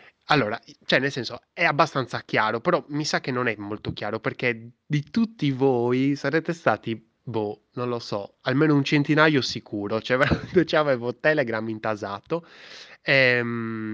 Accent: native